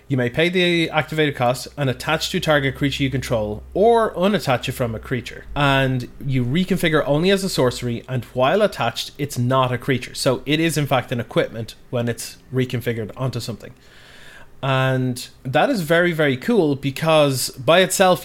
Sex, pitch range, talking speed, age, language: male, 125-145 Hz, 180 wpm, 30-49, English